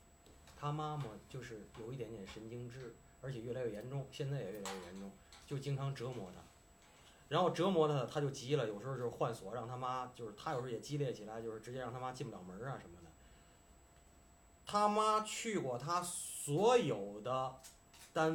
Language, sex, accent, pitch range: Chinese, male, native, 105-155 Hz